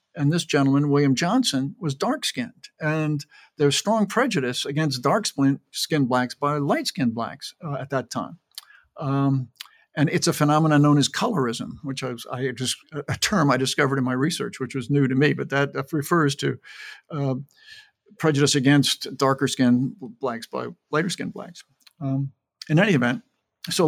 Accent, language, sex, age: American, English, male, 50-69